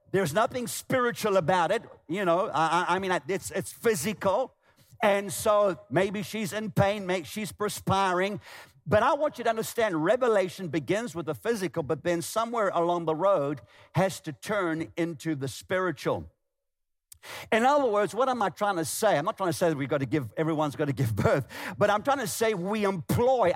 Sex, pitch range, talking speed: male, 160-215 Hz, 195 wpm